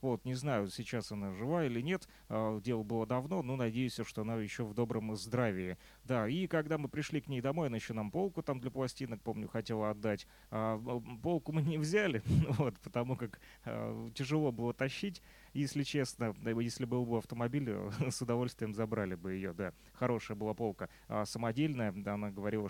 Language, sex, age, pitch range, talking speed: Russian, male, 30-49, 110-145 Hz, 190 wpm